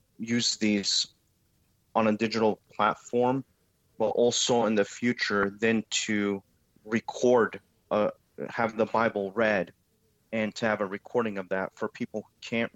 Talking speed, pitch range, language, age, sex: 140 wpm, 95-110 Hz, English, 30-49, male